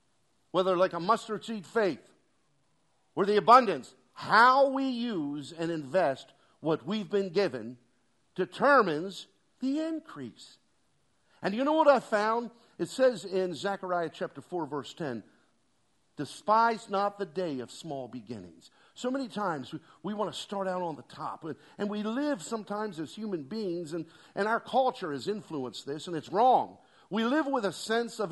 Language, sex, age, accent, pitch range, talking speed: English, male, 50-69, American, 160-230 Hz, 165 wpm